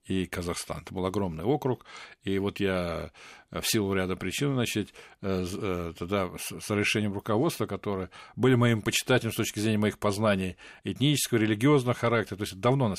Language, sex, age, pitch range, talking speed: Russian, male, 50-69, 95-110 Hz, 155 wpm